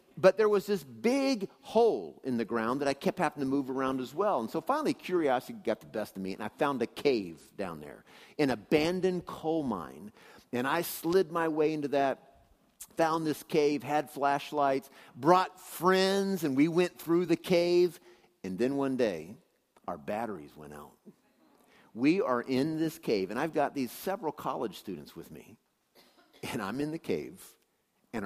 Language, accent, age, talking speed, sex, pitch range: English, American, 50-69, 185 wpm, male, 125-170 Hz